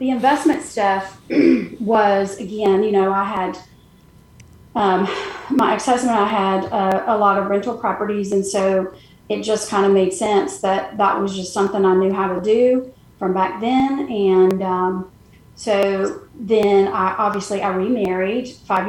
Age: 30-49